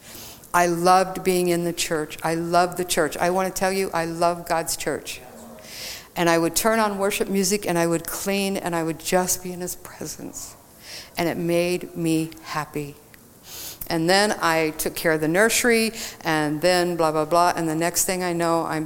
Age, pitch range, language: 60-79, 160-195 Hz, English